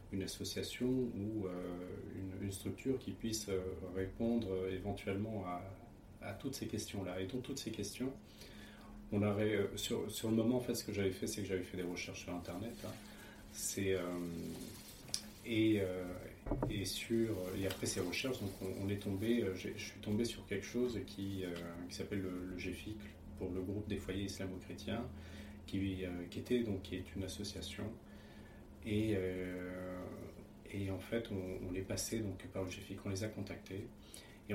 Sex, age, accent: male, 30-49, French